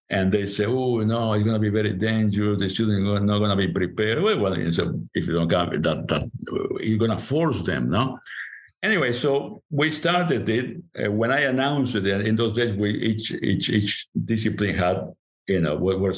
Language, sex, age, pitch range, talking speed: English, male, 60-79, 95-125 Hz, 210 wpm